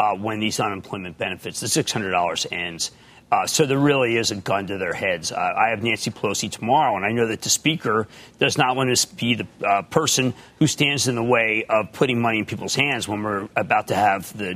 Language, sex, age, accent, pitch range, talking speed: English, male, 40-59, American, 120-185 Hz, 225 wpm